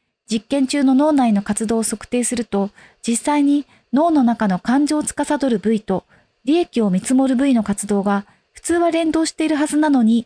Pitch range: 215-285 Hz